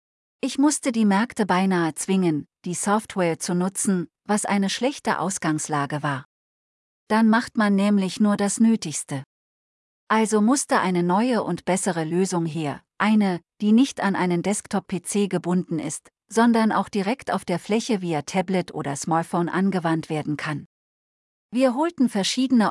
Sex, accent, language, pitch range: female, German, German, 165-215 Hz